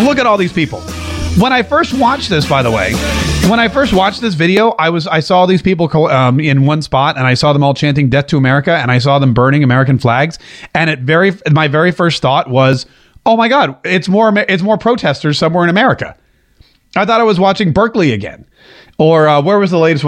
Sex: male